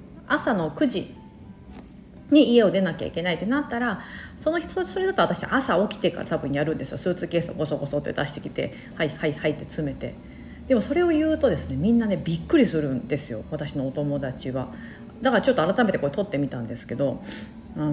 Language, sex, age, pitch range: Japanese, female, 40-59, 150-255 Hz